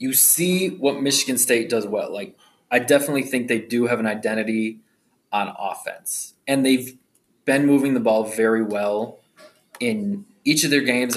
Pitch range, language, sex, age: 115-145 Hz, English, male, 20-39